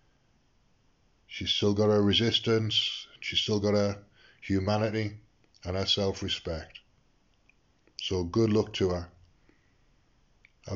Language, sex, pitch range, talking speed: English, male, 95-110 Hz, 105 wpm